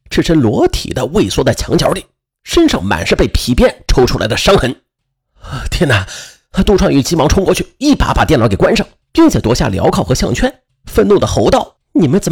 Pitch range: 125-205 Hz